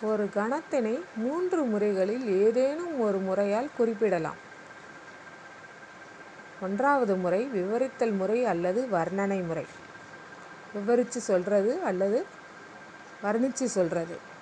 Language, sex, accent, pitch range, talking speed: Tamil, female, native, 195-245 Hz, 80 wpm